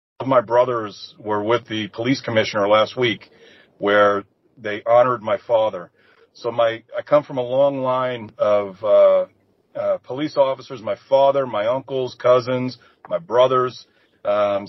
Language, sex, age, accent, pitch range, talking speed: English, male, 50-69, American, 110-145 Hz, 145 wpm